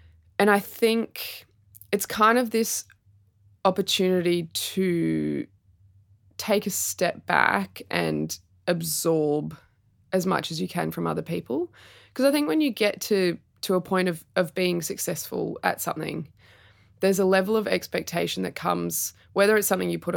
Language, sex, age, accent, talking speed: English, female, 20-39, Australian, 150 wpm